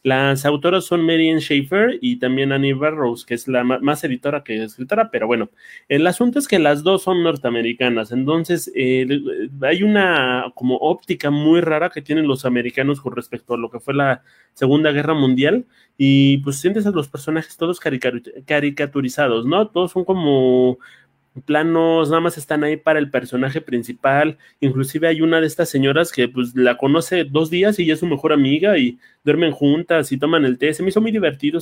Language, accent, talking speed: Spanish, Mexican, 190 wpm